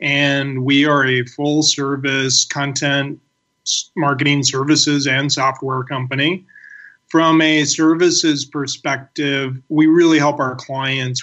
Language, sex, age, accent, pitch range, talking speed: English, male, 30-49, American, 135-155 Hz, 105 wpm